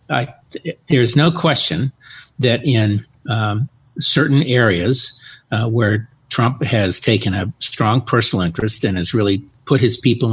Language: English